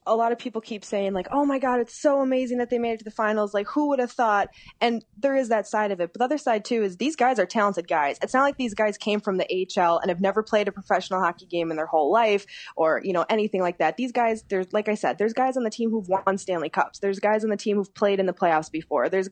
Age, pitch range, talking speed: 20-39, 165-215 Hz, 300 wpm